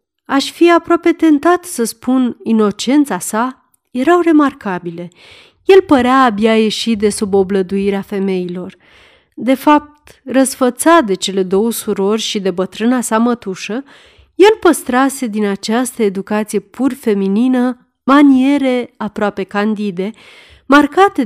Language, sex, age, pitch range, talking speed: Romanian, female, 30-49, 200-275 Hz, 115 wpm